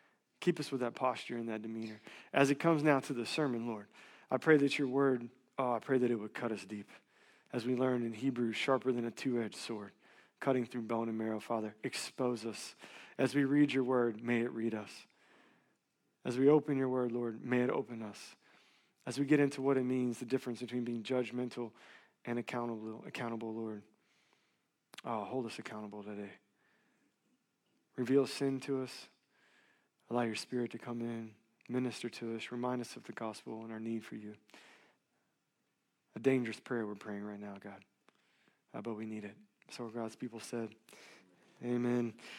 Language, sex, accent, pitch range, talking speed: English, male, American, 115-145 Hz, 180 wpm